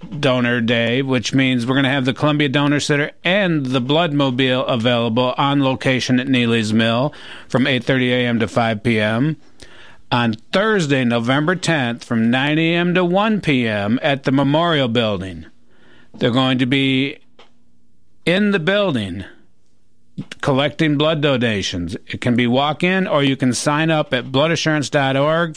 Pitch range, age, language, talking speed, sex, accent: 125-155 Hz, 50-69, English, 145 wpm, male, American